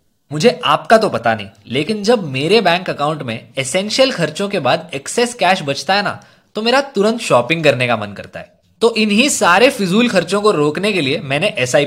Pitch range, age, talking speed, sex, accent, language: 135-215 Hz, 20-39, 200 wpm, male, native, Hindi